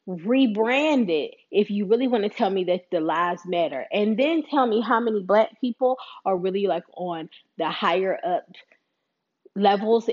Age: 20-39